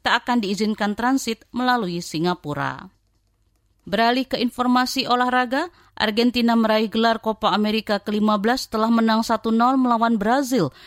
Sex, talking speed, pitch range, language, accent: female, 115 wpm, 205-245 Hz, Indonesian, native